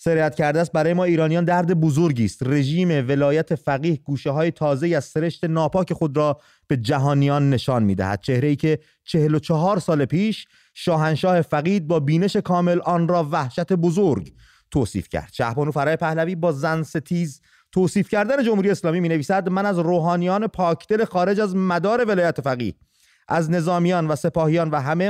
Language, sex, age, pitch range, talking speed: English, male, 30-49, 145-180 Hz, 170 wpm